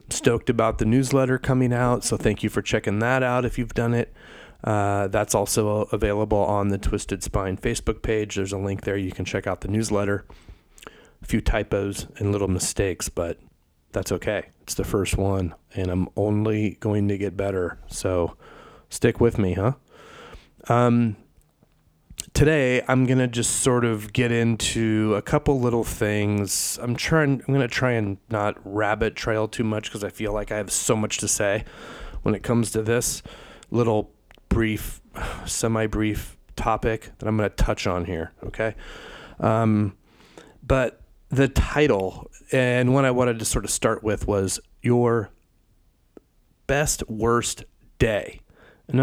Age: 30-49